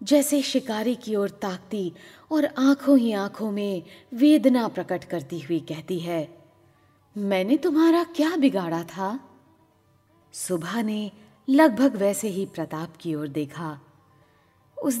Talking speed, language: 130 wpm, Hindi